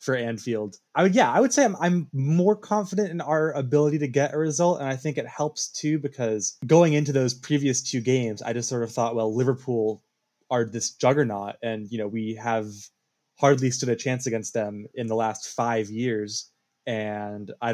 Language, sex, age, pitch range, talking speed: English, male, 20-39, 115-145 Hz, 205 wpm